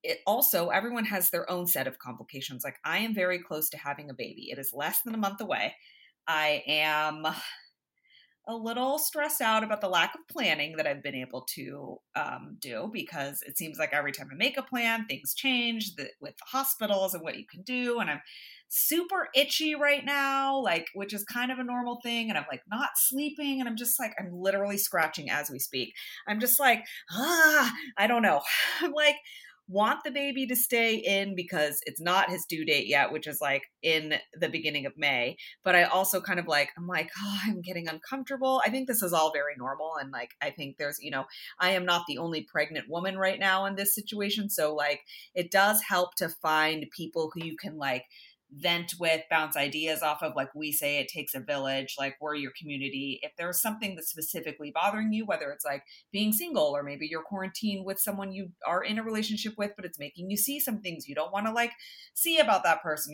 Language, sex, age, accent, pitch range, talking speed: English, female, 30-49, American, 155-230 Hz, 220 wpm